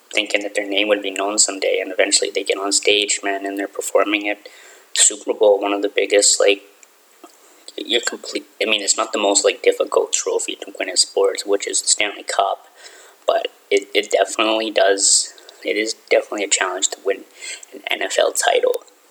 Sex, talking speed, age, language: male, 190 wpm, 20-39, English